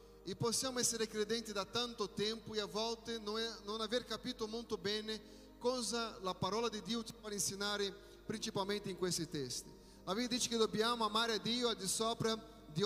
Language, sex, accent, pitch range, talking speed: Italian, male, Brazilian, 195-235 Hz, 185 wpm